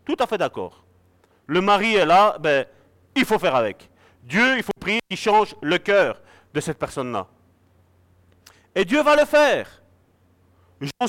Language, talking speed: French, 160 wpm